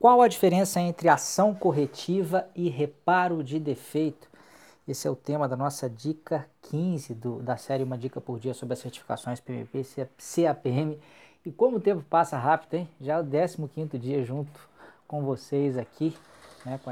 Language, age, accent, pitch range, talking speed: Portuguese, 20-39, Brazilian, 135-180 Hz, 175 wpm